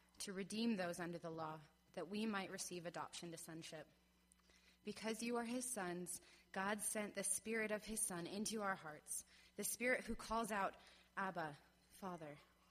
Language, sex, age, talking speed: English, female, 20-39, 165 wpm